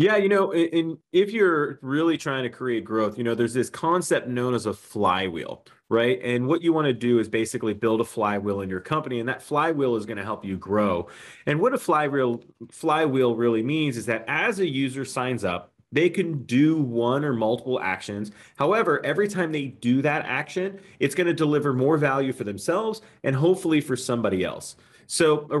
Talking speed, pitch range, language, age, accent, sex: 205 wpm, 120-155 Hz, English, 30-49, American, male